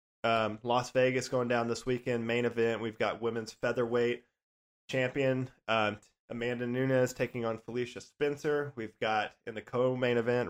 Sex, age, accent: male, 20-39, American